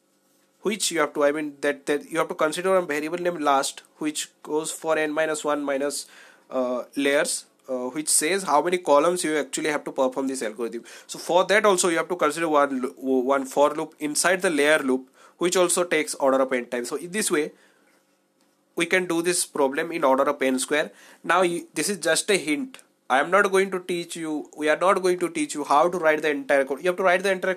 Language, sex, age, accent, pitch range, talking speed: English, male, 30-49, Indian, 145-180 Hz, 235 wpm